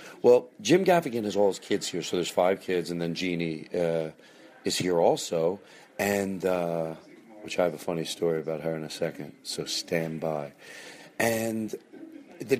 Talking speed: 175 wpm